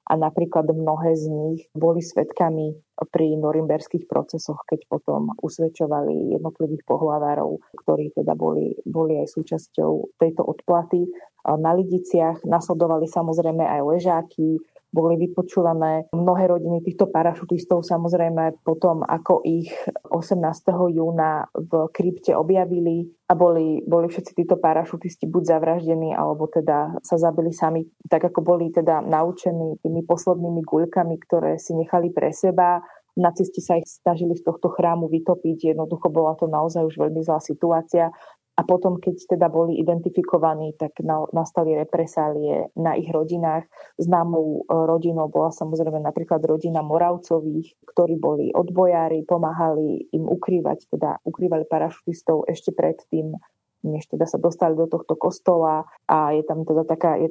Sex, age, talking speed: female, 20-39, 135 wpm